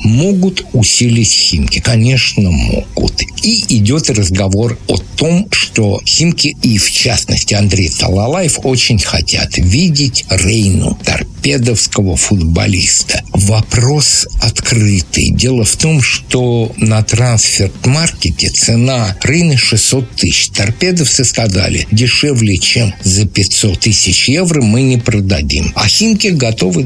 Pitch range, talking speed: 95-125 Hz, 110 wpm